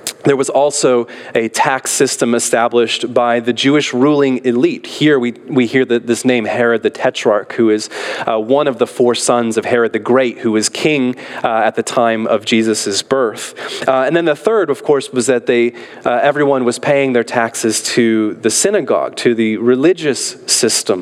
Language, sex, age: English, male, 30-49